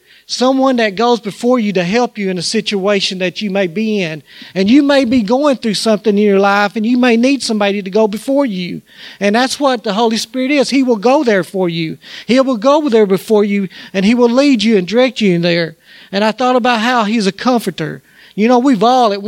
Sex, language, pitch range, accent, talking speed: male, English, 185-235 Hz, American, 240 wpm